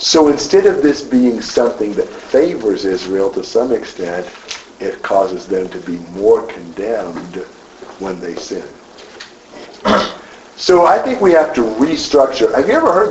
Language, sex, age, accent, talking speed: English, male, 50-69, American, 150 wpm